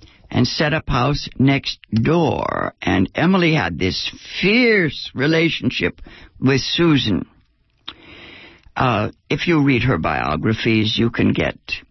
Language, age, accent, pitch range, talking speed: English, 60-79, American, 115-160 Hz, 115 wpm